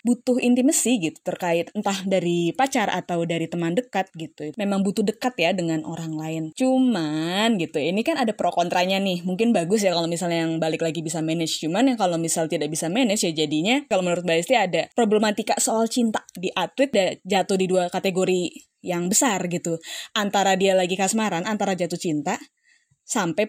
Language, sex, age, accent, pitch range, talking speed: Indonesian, female, 20-39, native, 175-235 Hz, 175 wpm